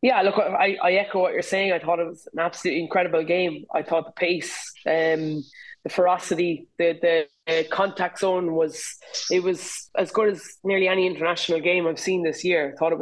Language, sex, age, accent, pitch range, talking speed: English, female, 20-39, Irish, 175-210 Hz, 205 wpm